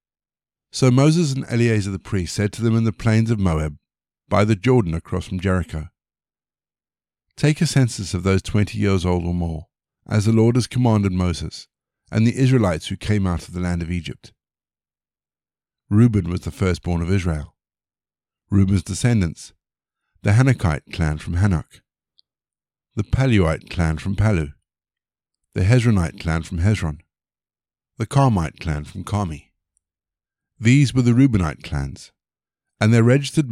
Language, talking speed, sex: English, 150 wpm, male